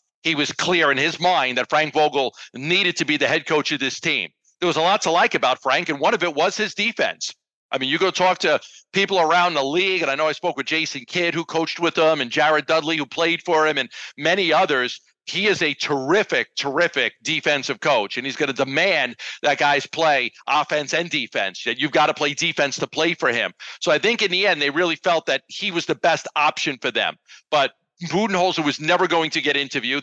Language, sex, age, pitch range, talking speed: English, male, 50-69, 145-175 Hz, 235 wpm